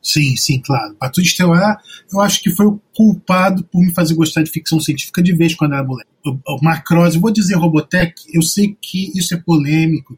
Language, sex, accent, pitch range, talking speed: Portuguese, male, Brazilian, 140-180 Hz, 205 wpm